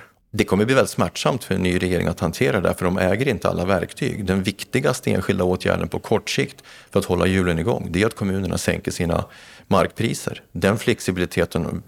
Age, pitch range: 40-59, 85-100 Hz